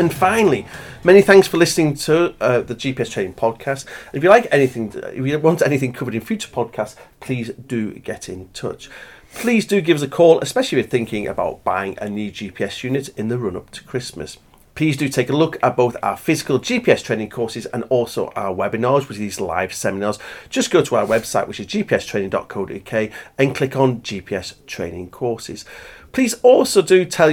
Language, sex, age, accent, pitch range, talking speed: English, male, 40-59, British, 110-155 Hz, 195 wpm